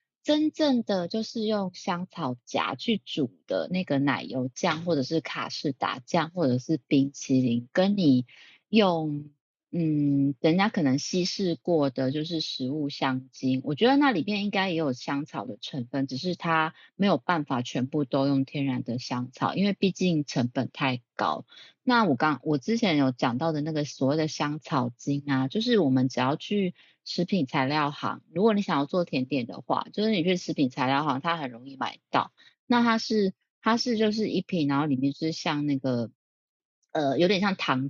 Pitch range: 135-190 Hz